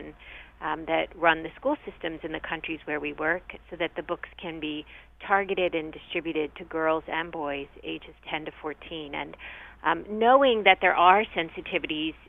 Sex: female